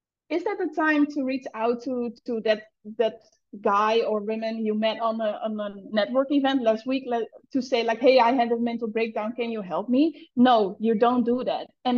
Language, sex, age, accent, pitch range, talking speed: English, female, 20-39, Dutch, 225-275 Hz, 220 wpm